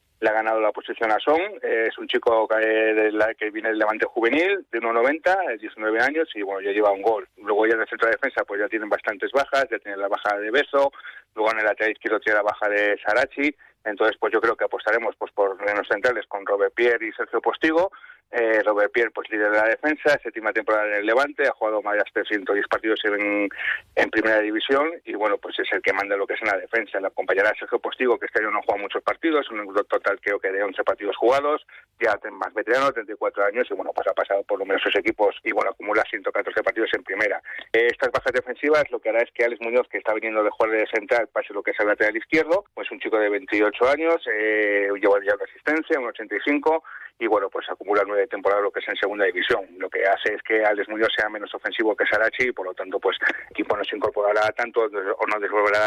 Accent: Spanish